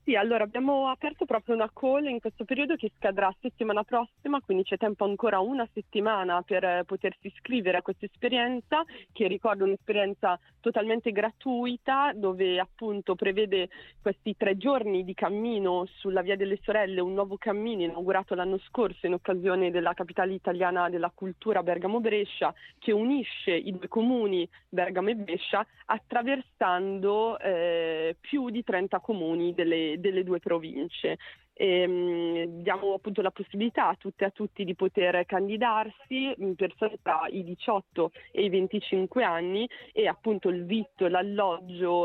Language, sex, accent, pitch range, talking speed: Italian, female, native, 180-215 Hz, 145 wpm